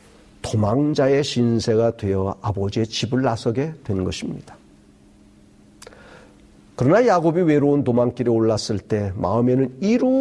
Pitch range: 105-150 Hz